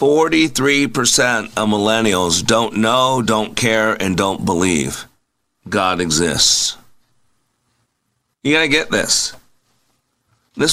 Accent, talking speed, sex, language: American, 100 wpm, male, English